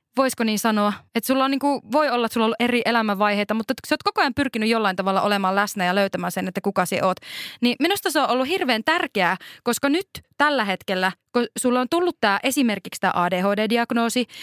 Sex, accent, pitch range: female, native, 200-270 Hz